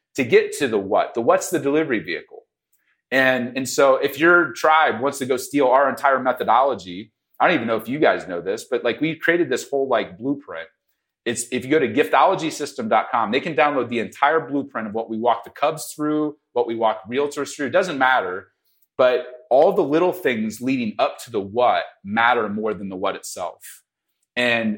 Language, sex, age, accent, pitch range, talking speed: English, male, 30-49, American, 125-180 Hz, 205 wpm